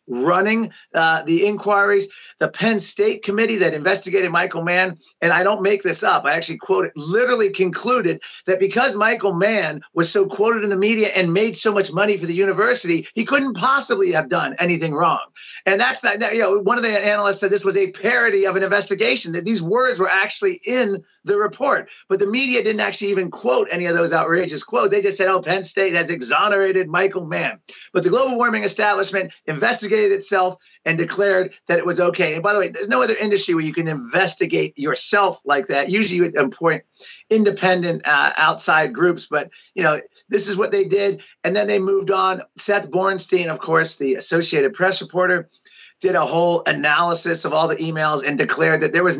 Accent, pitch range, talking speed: American, 170-205 Hz, 200 wpm